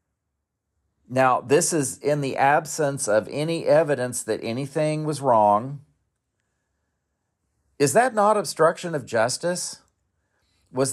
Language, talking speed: English, 110 wpm